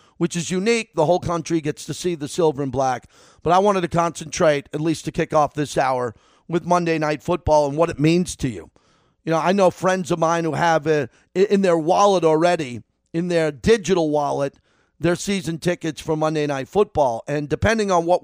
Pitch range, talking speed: 145-175 Hz, 205 wpm